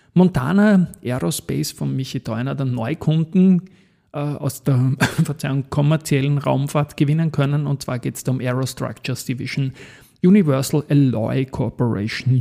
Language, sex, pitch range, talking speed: German, male, 125-155 Hz, 120 wpm